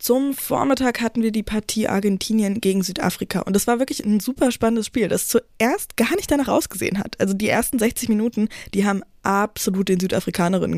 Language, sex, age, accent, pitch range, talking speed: German, female, 20-39, German, 195-235 Hz, 190 wpm